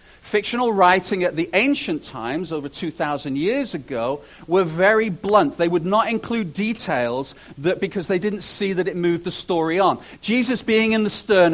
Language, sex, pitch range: English, male, 175-230 Hz